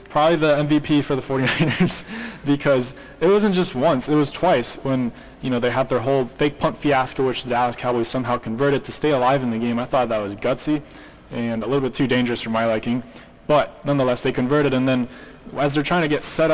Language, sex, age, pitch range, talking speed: English, male, 20-39, 120-145 Hz, 225 wpm